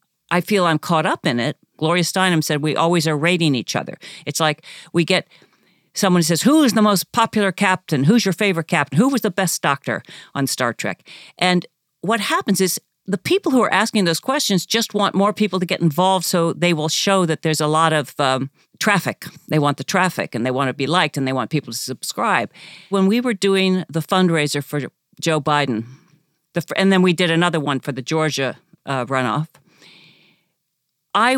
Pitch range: 145-190 Hz